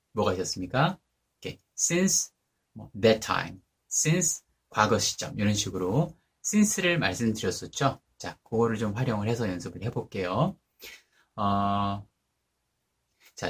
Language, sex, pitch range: Korean, male, 95-150 Hz